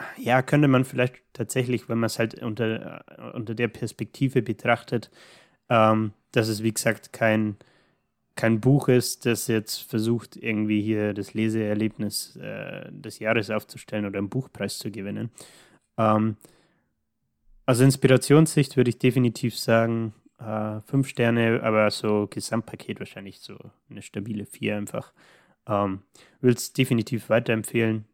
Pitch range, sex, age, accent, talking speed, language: 105-120 Hz, male, 20-39, German, 130 wpm, German